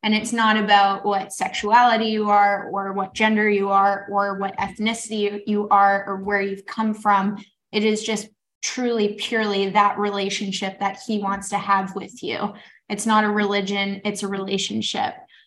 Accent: American